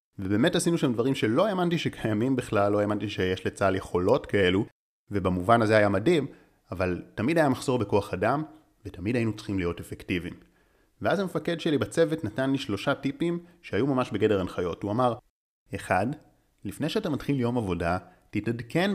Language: Hebrew